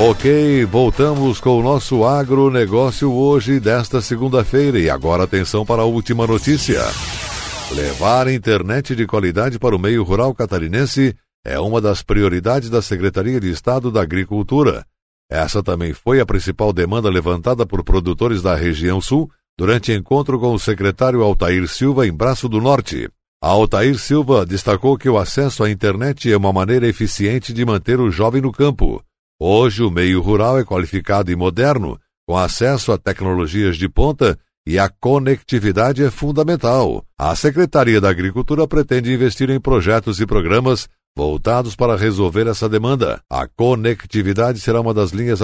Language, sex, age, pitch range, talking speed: Portuguese, male, 60-79, 100-125 Hz, 155 wpm